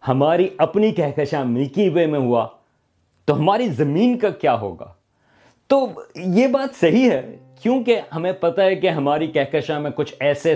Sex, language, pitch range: male, Urdu, 130-180 Hz